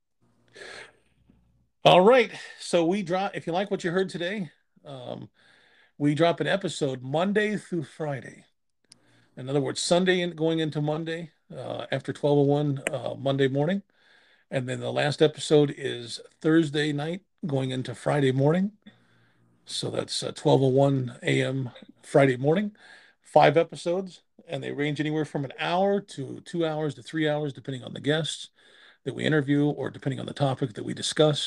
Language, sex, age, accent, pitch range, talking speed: English, male, 40-59, American, 135-170 Hz, 155 wpm